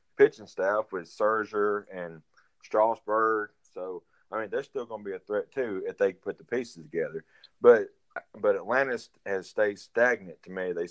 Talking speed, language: 170 wpm, English